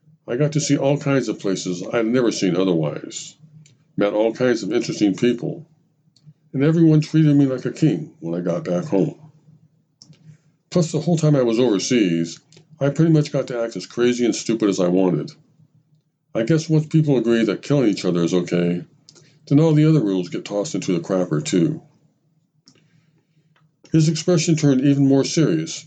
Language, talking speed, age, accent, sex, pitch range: English, 185 wpm, 50-69, American, male, 120-155 Hz